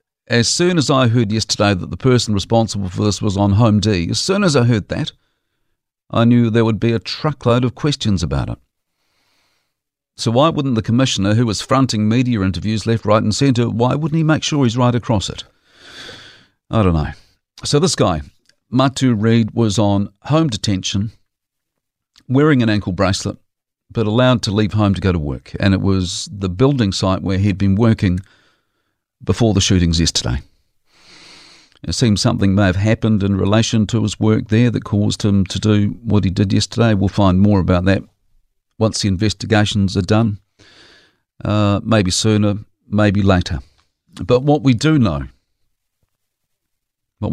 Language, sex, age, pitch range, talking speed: English, male, 50-69, 100-120 Hz, 175 wpm